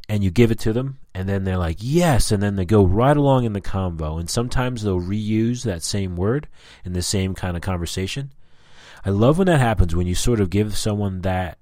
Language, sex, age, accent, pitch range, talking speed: English, male, 30-49, American, 80-105 Hz, 230 wpm